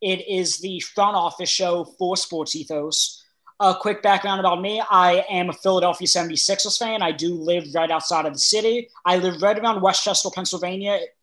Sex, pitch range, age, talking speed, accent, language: male, 185-225 Hz, 20-39, 180 wpm, American, English